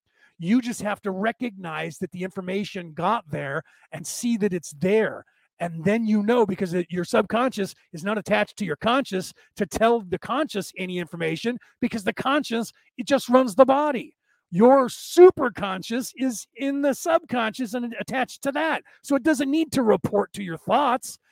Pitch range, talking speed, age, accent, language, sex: 185-235 Hz, 175 wpm, 40-59, American, English, male